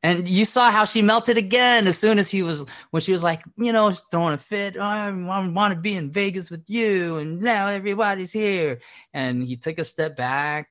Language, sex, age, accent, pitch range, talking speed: English, male, 30-49, American, 125-200 Hz, 220 wpm